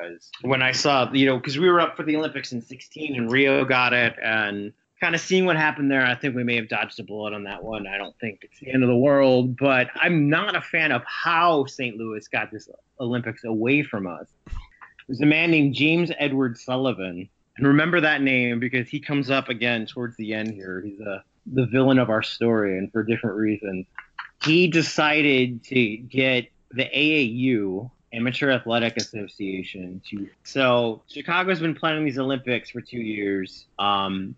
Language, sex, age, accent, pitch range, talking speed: English, male, 30-49, American, 110-145 Hz, 190 wpm